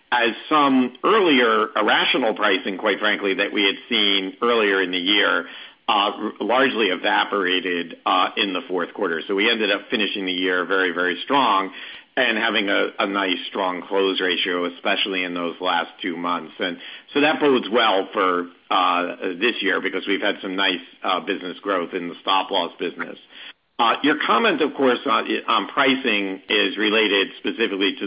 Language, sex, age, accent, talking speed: English, male, 50-69, American, 175 wpm